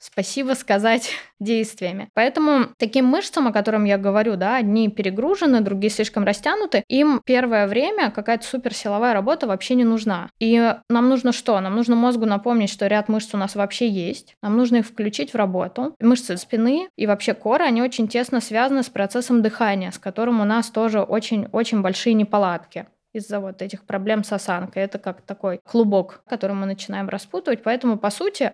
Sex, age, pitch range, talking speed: female, 20-39, 200-240 Hz, 175 wpm